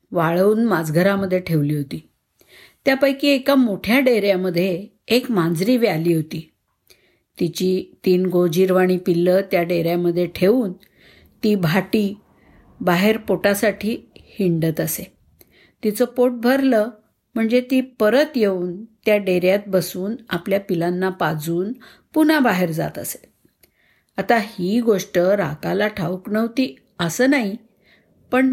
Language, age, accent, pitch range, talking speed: Marathi, 50-69, native, 185-240 Hz, 110 wpm